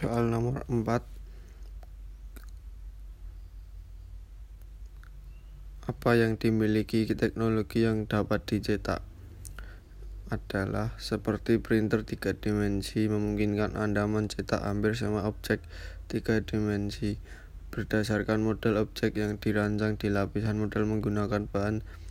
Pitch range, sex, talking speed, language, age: 95-110 Hz, male, 90 wpm, Indonesian, 20-39